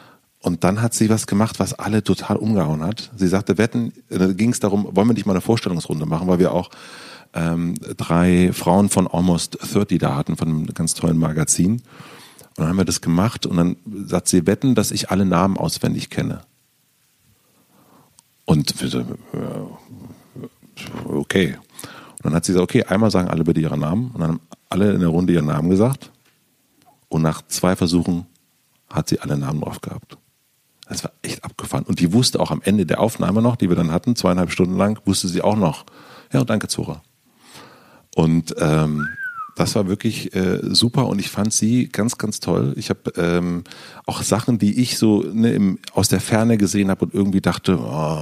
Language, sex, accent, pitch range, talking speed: German, male, German, 85-105 Hz, 190 wpm